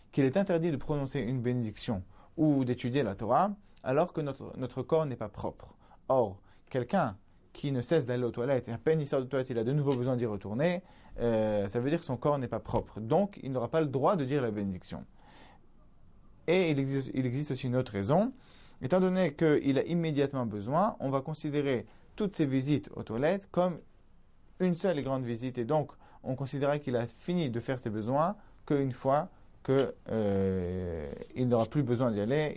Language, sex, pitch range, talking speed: French, male, 115-155 Hz, 205 wpm